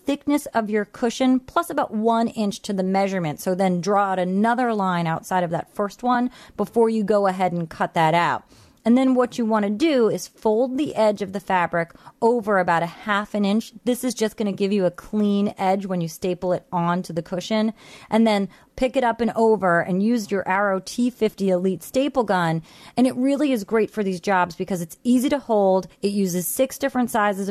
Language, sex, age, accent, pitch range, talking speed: English, female, 30-49, American, 185-230 Hz, 220 wpm